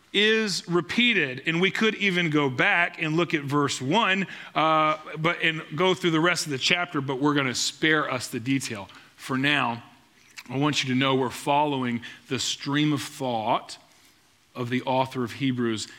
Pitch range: 130-175 Hz